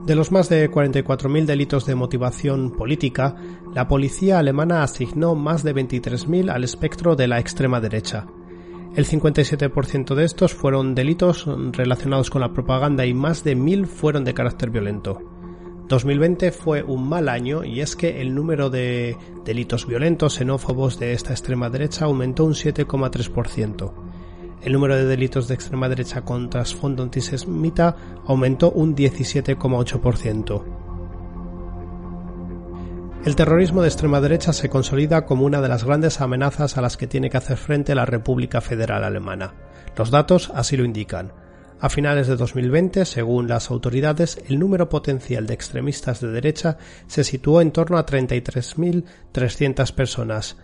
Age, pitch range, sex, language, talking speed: 30-49, 120-150 Hz, male, Spanish, 145 wpm